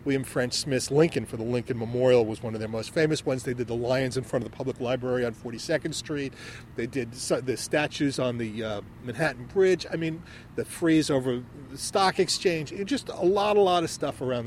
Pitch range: 125-160 Hz